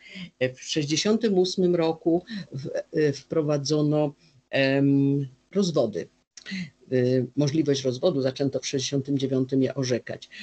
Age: 50-69